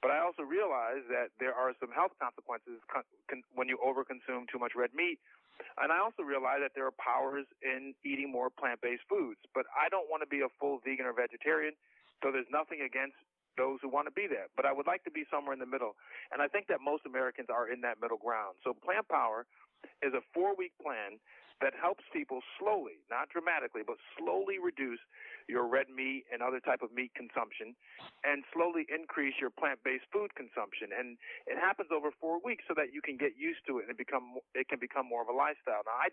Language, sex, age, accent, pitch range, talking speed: English, male, 40-59, American, 130-190 Hz, 215 wpm